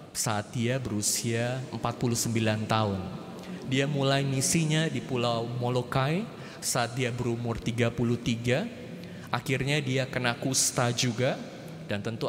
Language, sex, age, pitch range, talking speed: Indonesian, male, 20-39, 120-150 Hz, 105 wpm